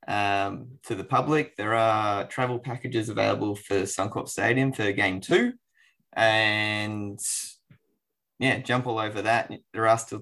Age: 20-39